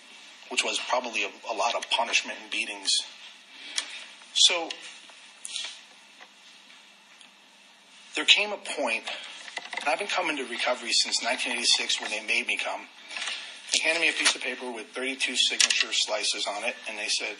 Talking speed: 150 wpm